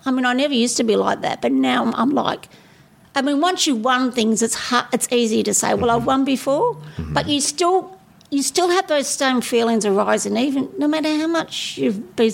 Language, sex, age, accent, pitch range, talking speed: English, female, 50-69, Australian, 220-265 Hz, 230 wpm